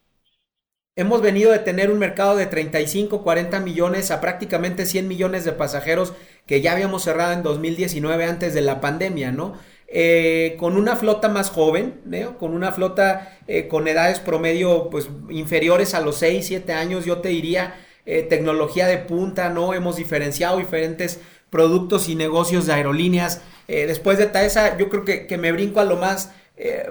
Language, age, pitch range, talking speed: Spanish, 40-59, 165-195 Hz, 175 wpm